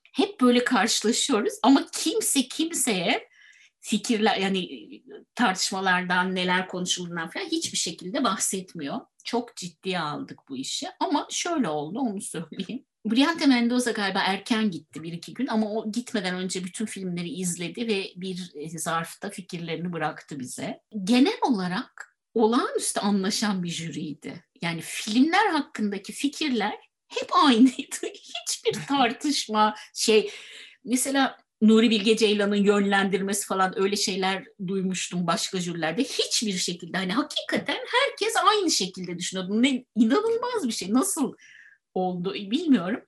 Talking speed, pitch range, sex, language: 120 wpm, 185-275 Hz, female, Turkish